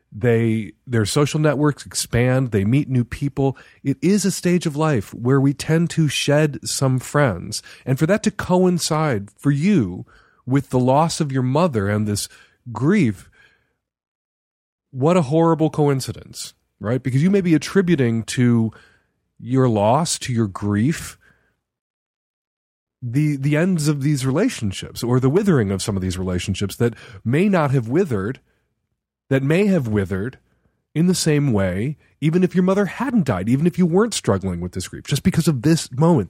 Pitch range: 115-160 Hz